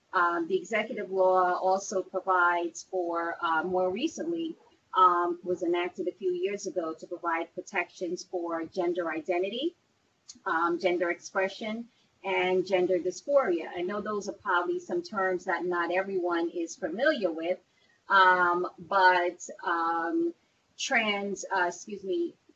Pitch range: 175-195 Hz